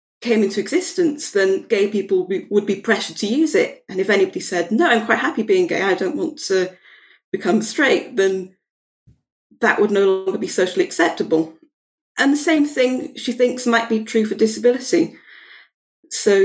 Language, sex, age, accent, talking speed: English, female, 40-59, British, 175 wpm